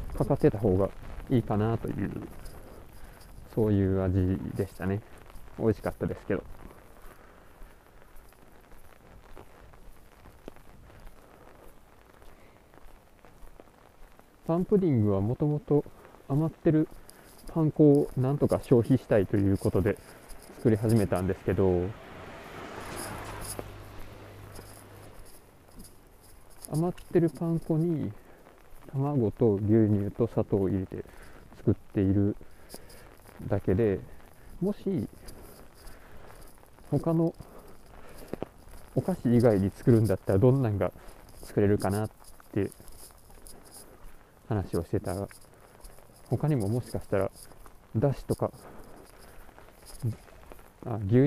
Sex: male